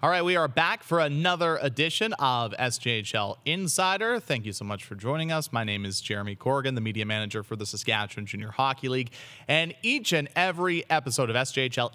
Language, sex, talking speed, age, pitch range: English, male, 195 wpm, 30-49, 115-145 Hz